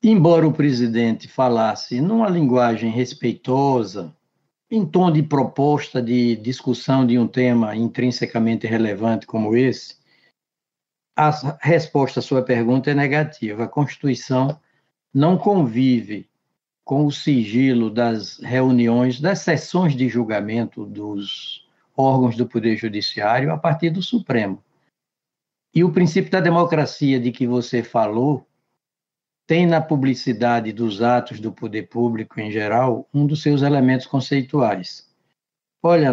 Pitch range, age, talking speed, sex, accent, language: 115-150 Hz, 60-79, 125 wpm, male, Brazilian, Portuguese